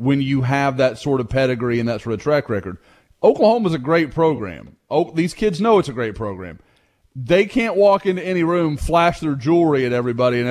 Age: 30-49